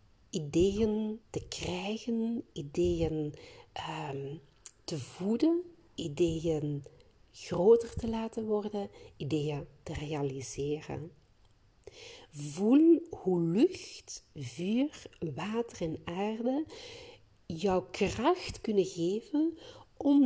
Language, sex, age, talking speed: Dutch, female, 50-69, 80 wpm